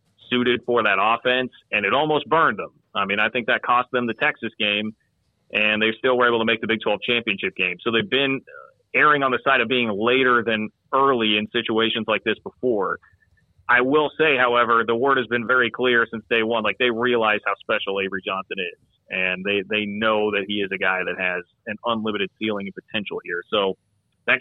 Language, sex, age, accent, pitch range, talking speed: English, male, 30-49, American, 110-125 Hz, 215 wpm